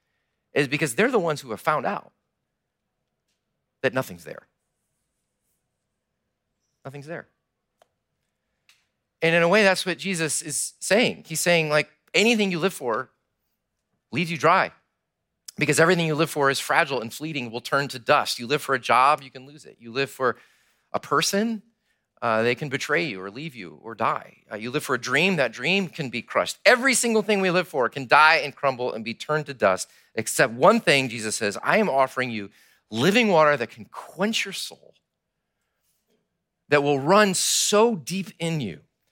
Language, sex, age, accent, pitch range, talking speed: English, male, 40-59, American, 135-195 Hz, 185 wpm